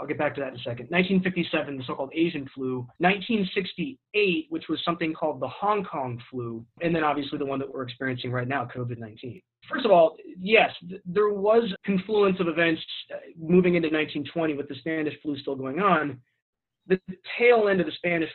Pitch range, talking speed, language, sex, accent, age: 130-180 Hz, 190 wpm, English, male, American, 30-49